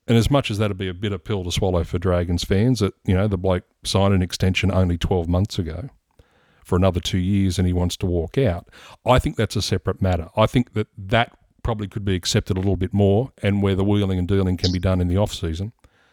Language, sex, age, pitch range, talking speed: English, male, 40-59, 90-110 Hz, 255 wpm